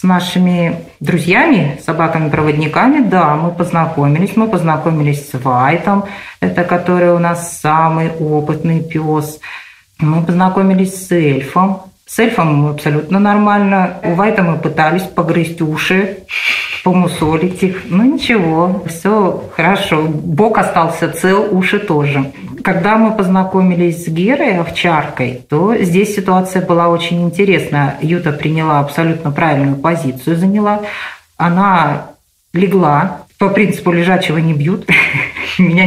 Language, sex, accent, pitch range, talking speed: Russian, female, native, 155-190 Hz, 115 wpm